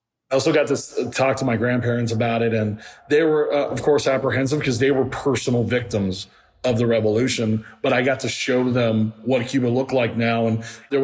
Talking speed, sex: 205 wpm, male